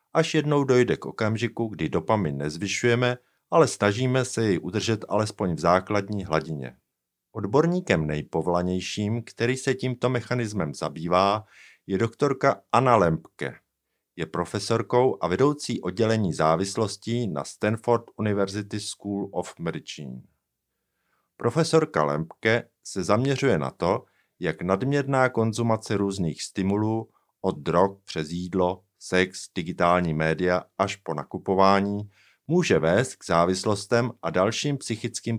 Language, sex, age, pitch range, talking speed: Czech, male, 50-69, 90-120 Hz, 115 wpm